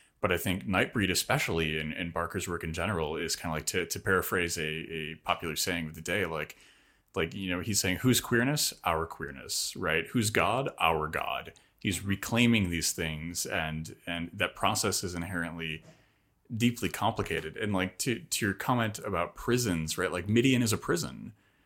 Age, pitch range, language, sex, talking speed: 30-49, 85-105 Hz, English, male, 185 wpm